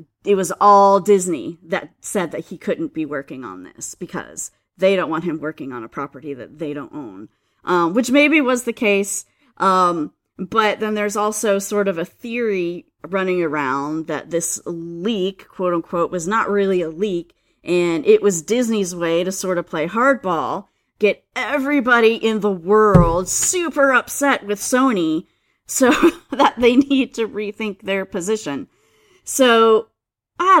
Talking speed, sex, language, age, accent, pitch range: 160 wpm, female, English, 40-59, American, 170-235 Hz